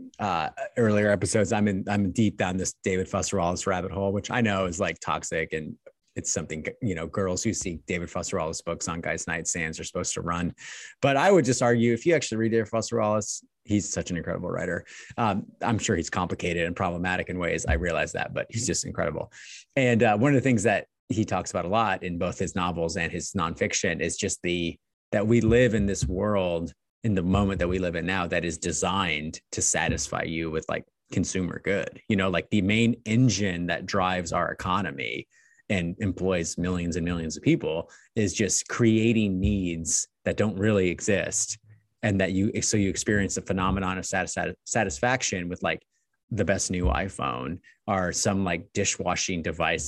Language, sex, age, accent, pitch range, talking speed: English, male, 30-49, American, 85-110 Hz, 200 wpm